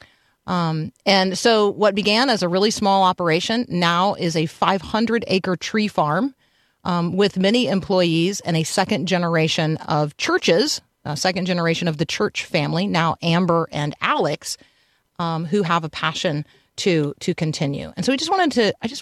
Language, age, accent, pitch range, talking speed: English, 40-59, American, 165-205 Hz, 175 wpm